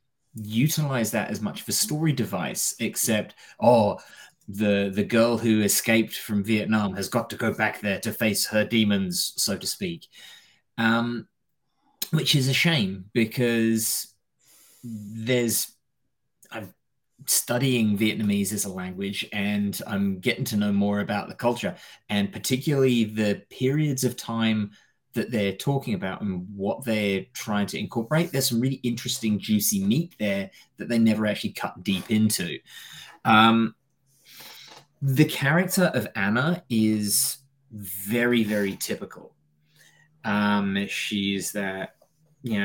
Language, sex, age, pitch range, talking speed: English, male, 20-39, 105-130 Hz, 135 wpm